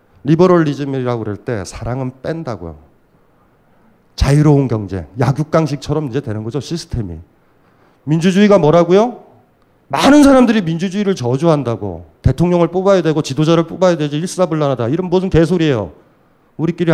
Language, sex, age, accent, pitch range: Korean, male, 40-59, native, 115-170 Hz